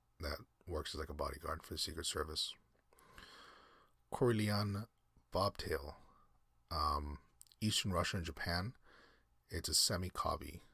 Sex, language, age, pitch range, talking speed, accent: male, English, 30-49, 75-95 Hz, 110 wpm, American